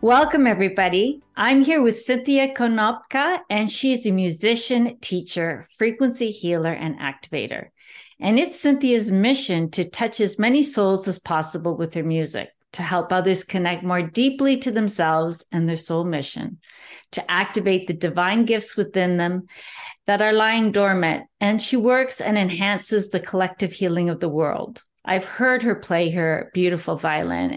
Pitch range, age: 175-230 Hz, 50-69